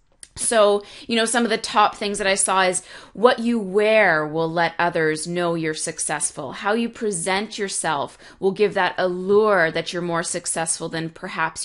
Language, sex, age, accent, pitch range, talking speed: English, female, 30-49, American, 170-210 Hz, 180 wpm